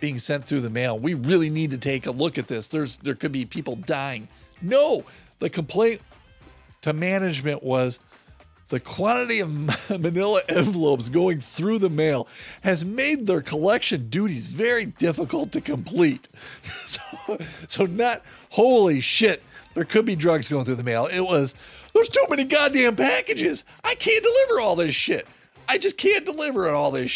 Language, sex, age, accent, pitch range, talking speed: English, male, 40-59, American, 130-215 Hz, 170 wpm